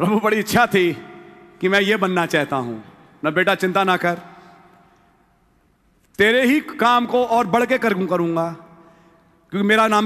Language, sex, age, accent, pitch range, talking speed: English, male, 40-59, Indian, 210-275 Hz, 155 wpm